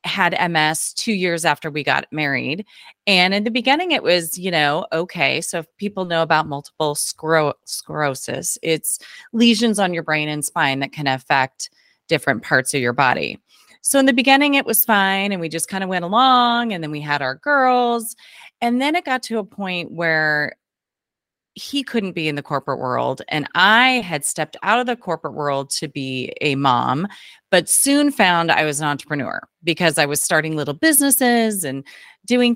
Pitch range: 150-220 Hz